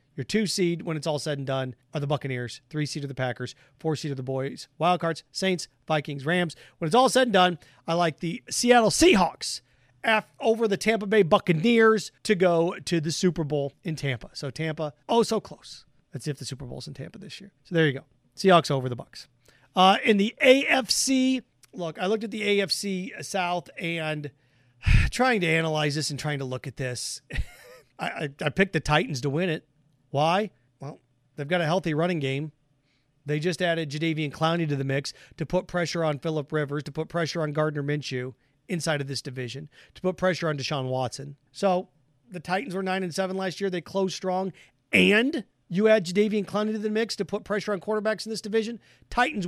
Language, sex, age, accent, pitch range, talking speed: English, male, 40-59, American, 145-195 Hz, 205 wpm